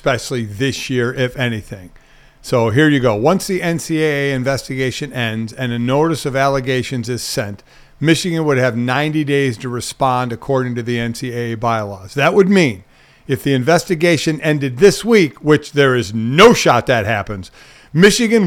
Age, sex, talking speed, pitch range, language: 50-69, male, 160 wpm, 125-160 Hz, English